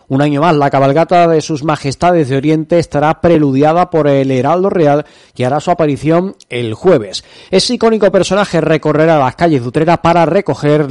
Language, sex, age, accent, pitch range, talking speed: Spanish, male, 30-49, Spanish, 140-170 Hz, 175 wpm